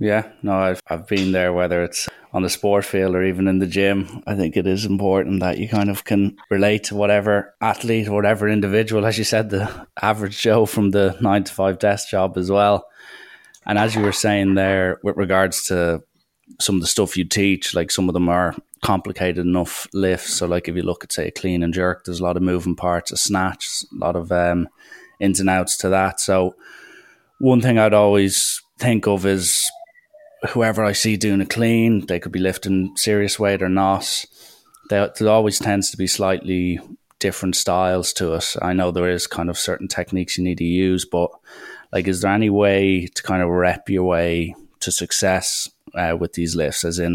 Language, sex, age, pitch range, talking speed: English, male, 20-39, 90-100 Hz, 205 wpm